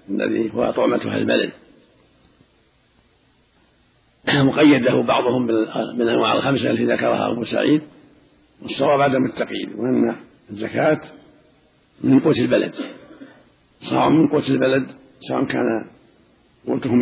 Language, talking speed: Arabic, 100 wpm